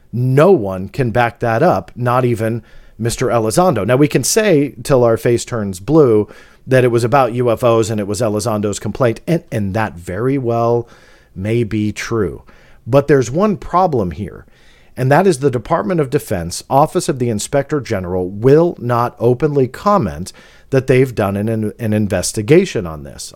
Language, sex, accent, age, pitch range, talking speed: English, male, American, 40-59, 100-140 Hz, 170 wpm